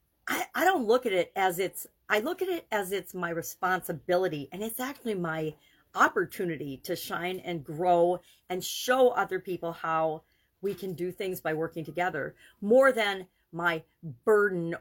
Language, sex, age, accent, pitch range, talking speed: English, female, 40-59, American, 160-205 Hz, 160 wpm